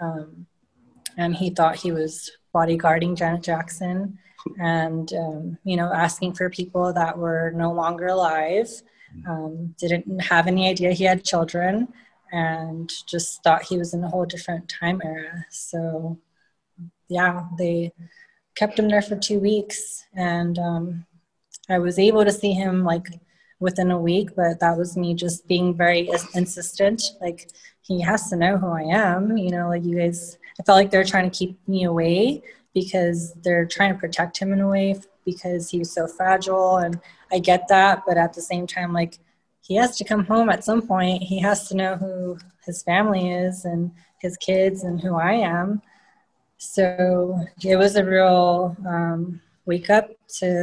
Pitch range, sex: 170-190 Hz, female